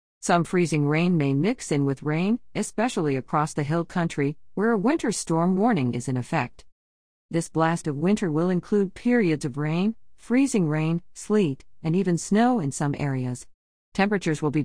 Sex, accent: female, American